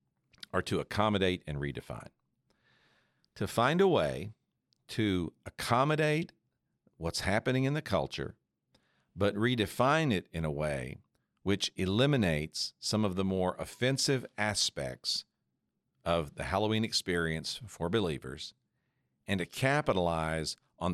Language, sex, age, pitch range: English, male, 50-69, 80-115 Hz